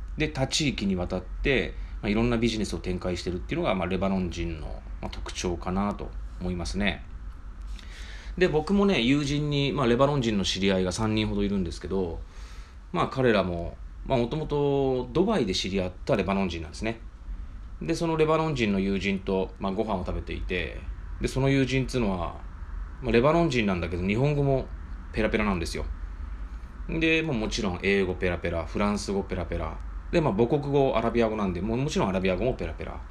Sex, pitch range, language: male, 80-120 Hz, Japanese